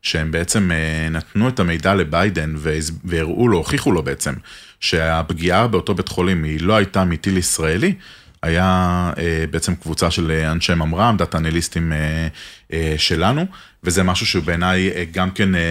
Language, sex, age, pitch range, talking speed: Hebrew, male, 30-49, 80-95 Hz, 135 wpm